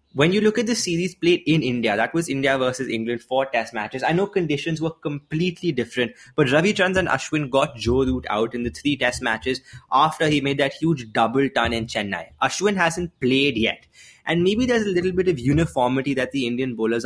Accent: Indian